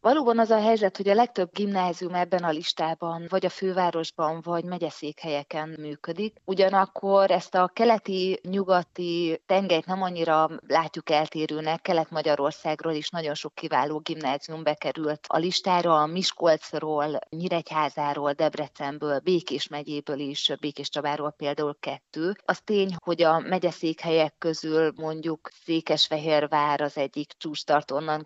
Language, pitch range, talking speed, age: Hungarian, 150-180 Hz, 125 wpm, 30-49